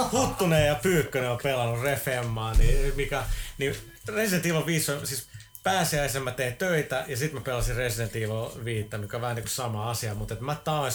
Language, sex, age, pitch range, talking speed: Finnish, male, 30-49, 115-140 Hz, 185 wpm